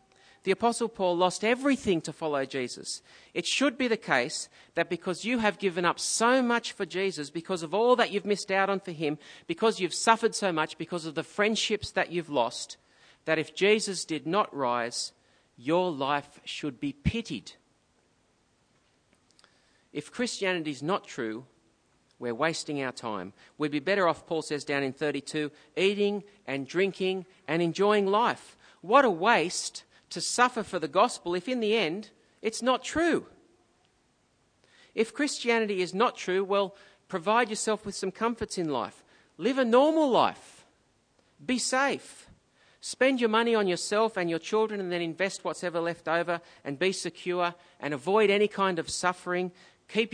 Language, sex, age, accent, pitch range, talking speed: English, male, 40-59, Australian, 160-210 Hz, 165 wpm